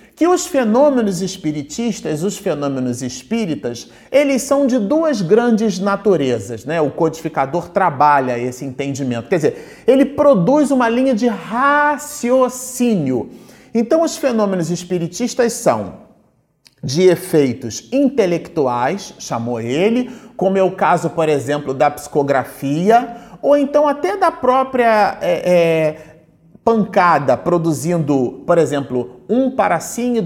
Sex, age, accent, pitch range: male, 40-59, Brazilian, 155-230 Hz